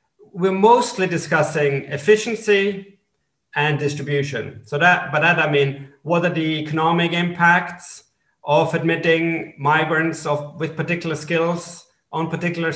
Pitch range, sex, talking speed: 145-180 Hz, male, 115 wpm